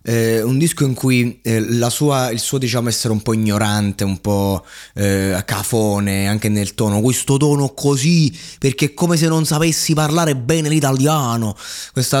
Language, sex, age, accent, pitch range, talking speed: Italian, male, 20-39, native, 105-135 Hz, 170 wpm